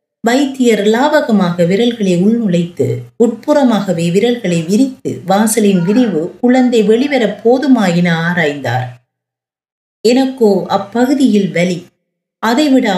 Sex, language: female, Tamil